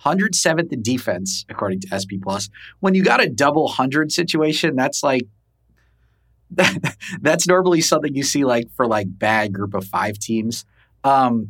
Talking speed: 160 wpm